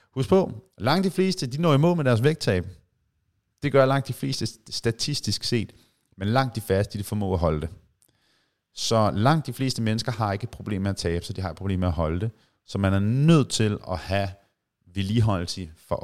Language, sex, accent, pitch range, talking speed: Danish, male, native, 95-135 Hz, 210 wpm